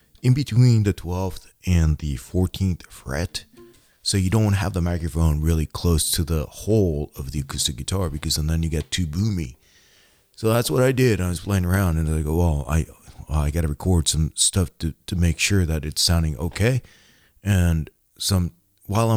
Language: English